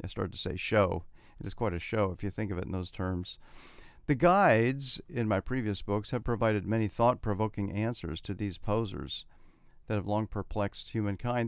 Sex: male